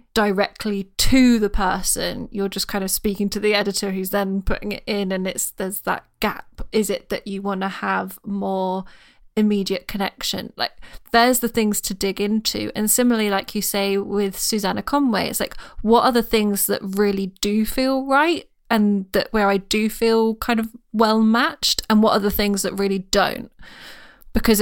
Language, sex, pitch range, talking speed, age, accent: English, female, 195-225 Hz, 190 wpm, 10-29, British